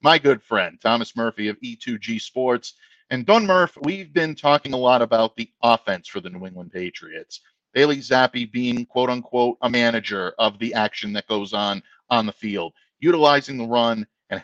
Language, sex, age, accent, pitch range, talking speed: English, male, 50-69, American, 115-140 Hz, 185 wpm